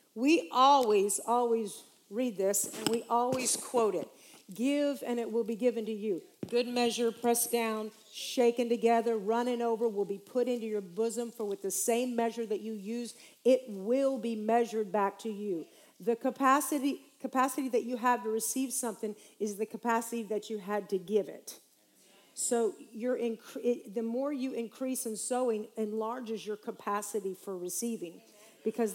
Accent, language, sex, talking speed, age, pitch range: American, English, female, 165 wpm, 50-69, 220-260 Hz